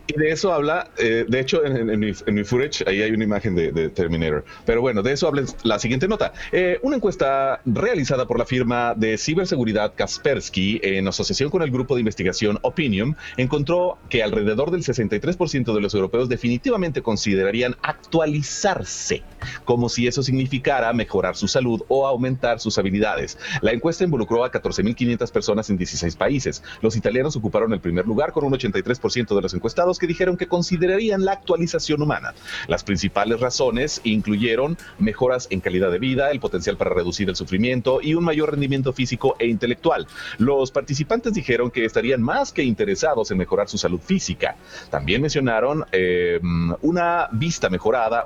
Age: 40-59